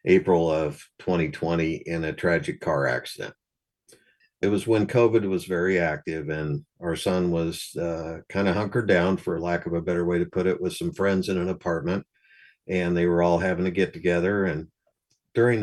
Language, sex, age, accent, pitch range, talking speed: English, male, 50-69, American, 85-105 Hz, 190 wpm